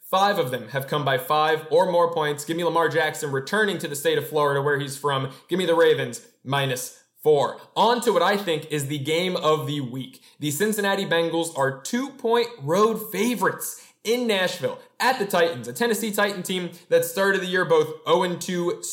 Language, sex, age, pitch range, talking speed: English, male, 20-39, 150-205 Hz, 200 wpm